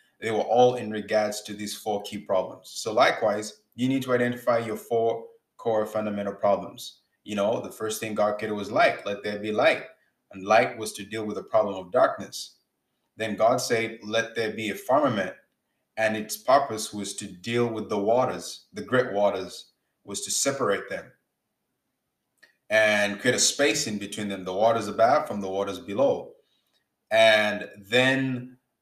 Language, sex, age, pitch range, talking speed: English, male, 20-39, 105-125 Hz, 175 wpm